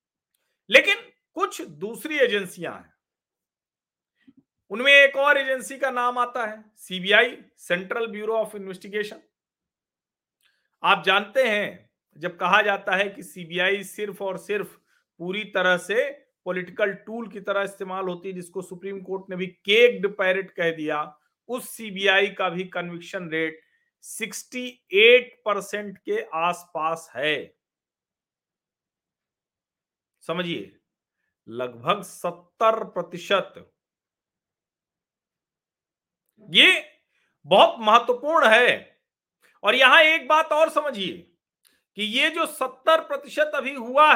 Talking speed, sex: 110 wpm, male